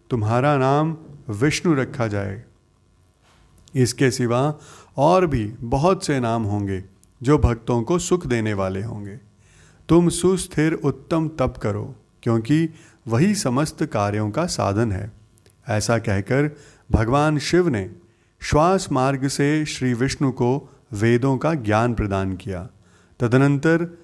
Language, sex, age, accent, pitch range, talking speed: Hindi, male, 30-49, native, 110-150 Hz, 120 wpm